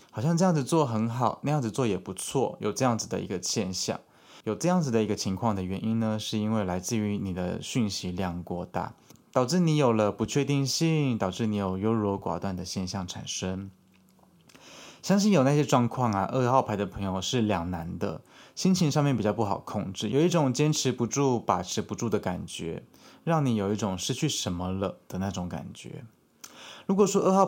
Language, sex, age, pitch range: Chinese, male, 20-39, 95-135 Hz